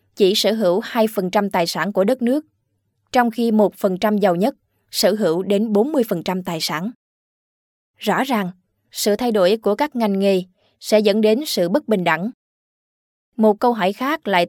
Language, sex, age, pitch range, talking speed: Vietnamese, female, 20-39, 185-230 Hz, 170 wpm